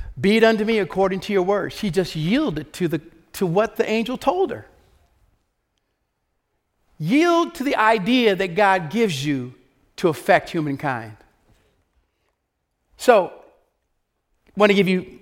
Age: 50-69